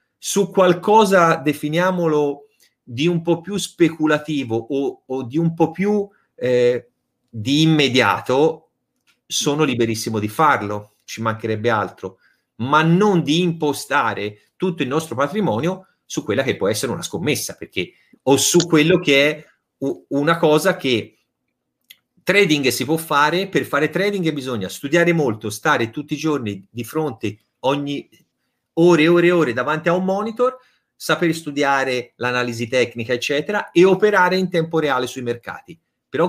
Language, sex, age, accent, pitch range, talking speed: Italian, male, 30-49, native, 120-170 Hz, 145 wpm